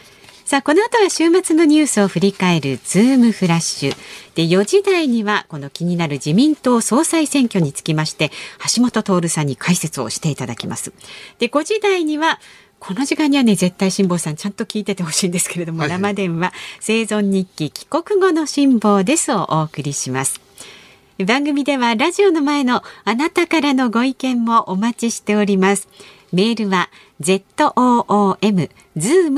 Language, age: Japanese, 50-69